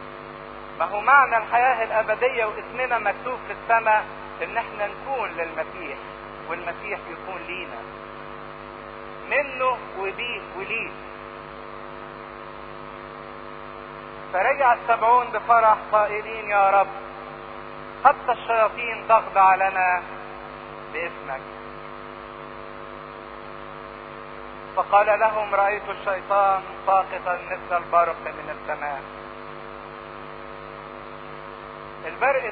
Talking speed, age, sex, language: 75 wpm, 50-69, male, English